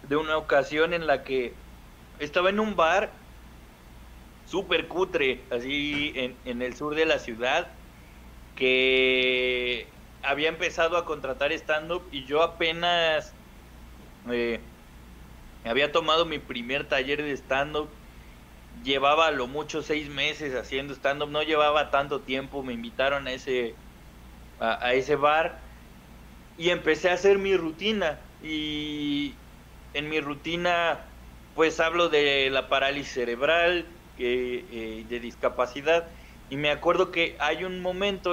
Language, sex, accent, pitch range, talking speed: Spanish, male, Mexican, 120-160 Hz, 130 wpm